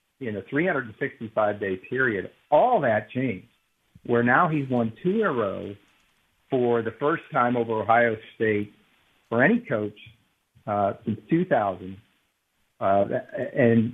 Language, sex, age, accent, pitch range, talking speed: English, male, 50-69, American, 105-130 Hz, 135 wpm